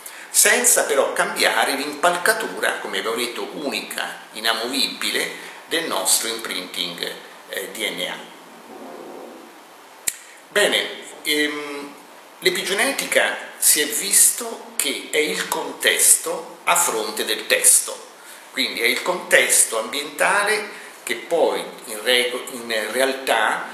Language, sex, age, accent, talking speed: Italian, male, 50-69, native, 95 wpm